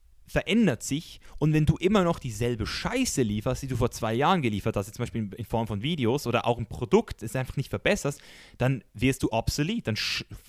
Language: German